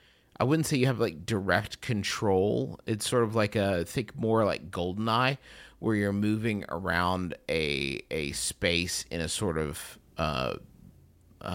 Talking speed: 160 wpm